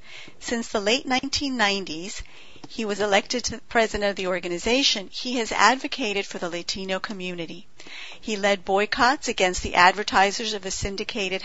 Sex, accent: female, American